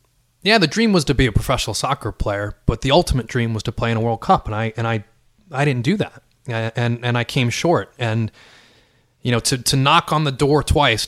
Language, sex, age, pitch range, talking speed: English, male, 20-39, 115-140 Hz, 240 wpm